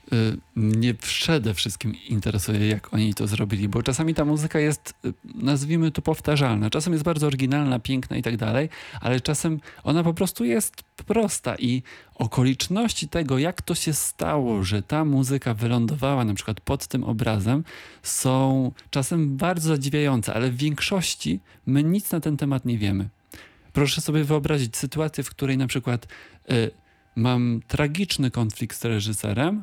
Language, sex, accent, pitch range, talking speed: Polish, male, native, 115-150 Hz, 150 wpm